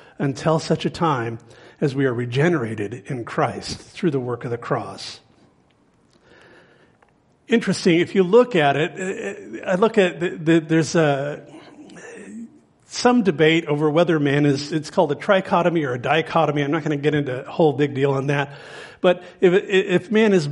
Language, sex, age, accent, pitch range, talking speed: English, male, 50-69, American, 155-200 Hz, 175 wpm